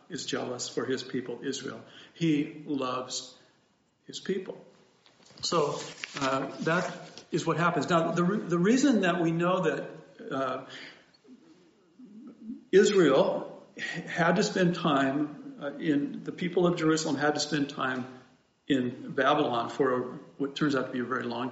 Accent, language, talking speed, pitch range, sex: American, English, 150 wpm, 130-165 Hz, male